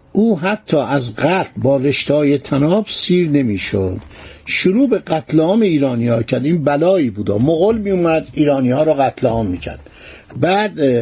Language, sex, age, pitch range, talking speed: Persian, male, 50-69, 135-180 Hz, 160 wpm